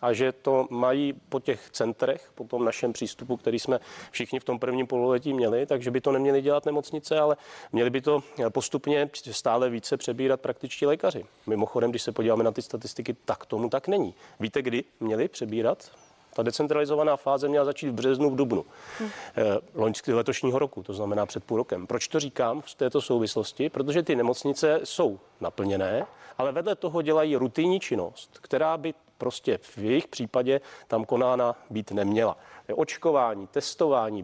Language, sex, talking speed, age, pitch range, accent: Czech, male, 170 wpm, 40-59, 115-145 Hz, native